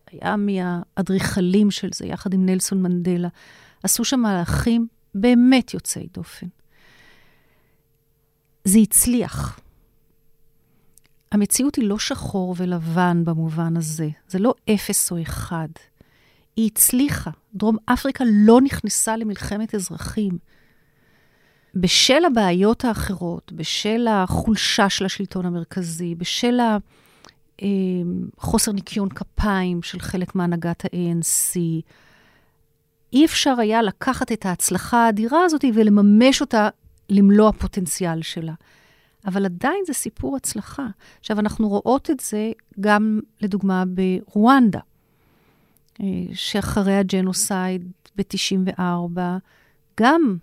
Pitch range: 180-220 Hz